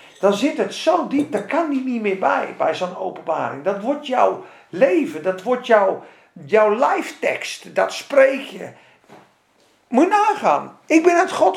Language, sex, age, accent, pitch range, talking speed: Dutch, male, 50-69, Dutch, 210-320 Hz, 165 wpm